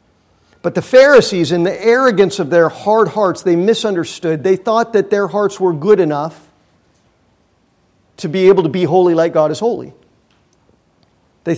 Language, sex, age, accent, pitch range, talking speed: English, male, 50-69, American, 165-210 Hz, 160 wpm